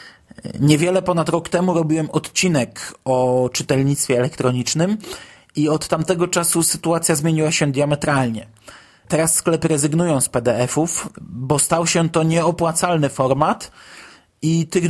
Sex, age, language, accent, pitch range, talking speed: male, 20-39, Polish, native, 145-185 Hz, 120 wpm